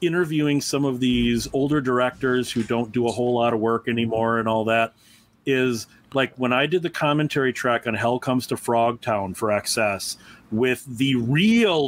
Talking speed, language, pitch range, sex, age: 185 wpm, English, 115-150 Hz, male, 40-59